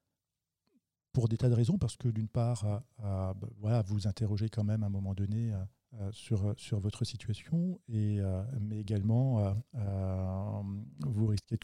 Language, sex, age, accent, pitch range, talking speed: French, male, 40-59, French, 100-115 Hz, 185 wpm